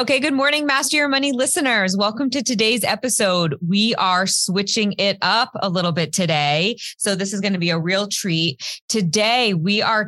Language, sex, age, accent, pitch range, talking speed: English, female, 20-39, American, 155-195 Hz, 190 wpm